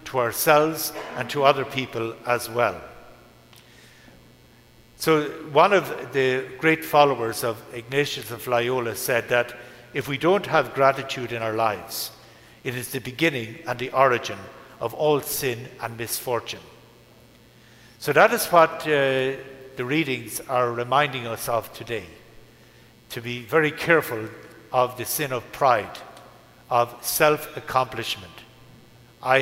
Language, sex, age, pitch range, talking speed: English, male, 60-79, 115-140 Hz, 130 wpm